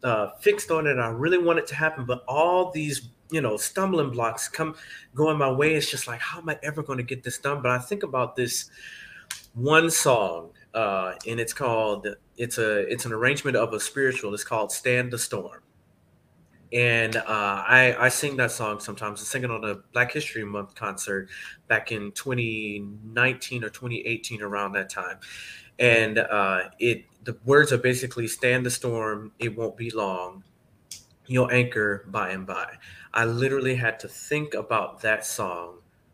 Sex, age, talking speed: male, 30-49, 185 wpm